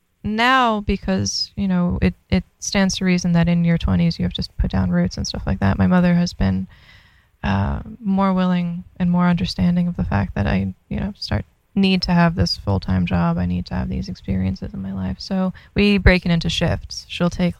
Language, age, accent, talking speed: English, 20-39, American, 220 wpm